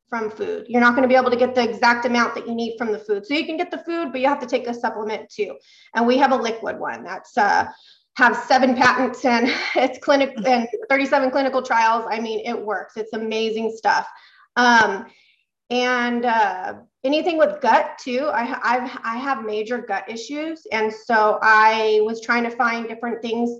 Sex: female